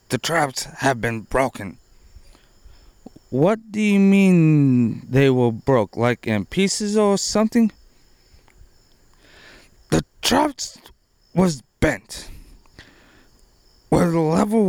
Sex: male